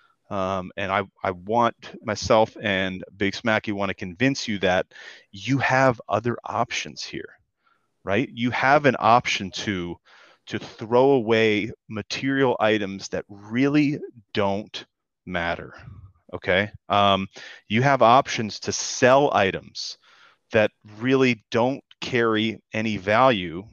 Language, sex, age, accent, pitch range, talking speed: English, male, 30-49, American, 95-115 Hz, 120 wpm